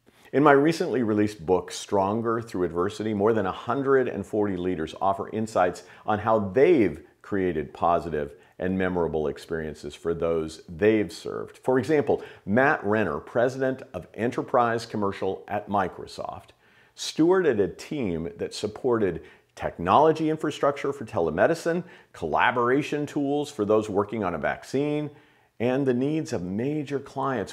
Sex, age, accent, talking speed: male, 50-69, American, 130 wpm